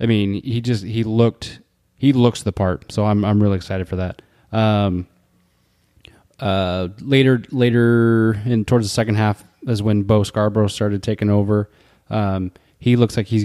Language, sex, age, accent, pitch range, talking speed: English, male, 20-39, American, 95-110 Hz, 170 wpm